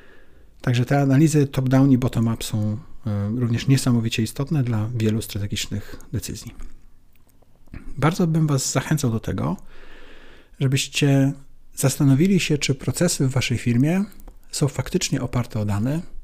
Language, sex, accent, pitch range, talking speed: Polish, male, native, 120-145 Hz, 120 wpm